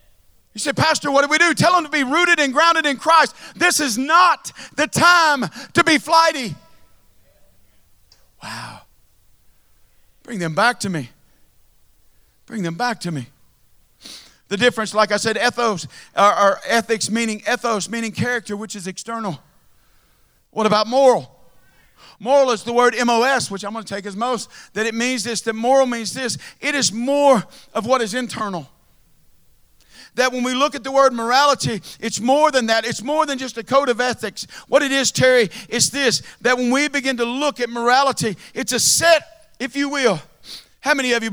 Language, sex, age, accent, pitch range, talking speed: English, male, 50-69, American, 200-275 Hz, 180 wpm